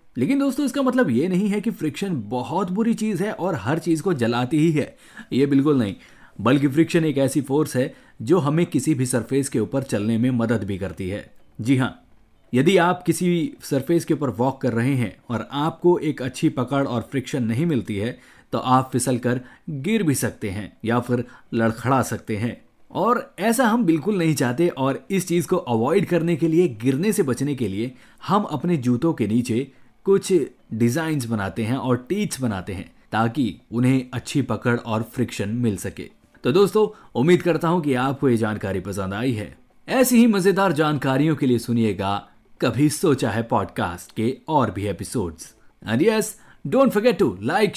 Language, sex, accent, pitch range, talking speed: Hindi, male, native, 115-170 Hz, 185 wpm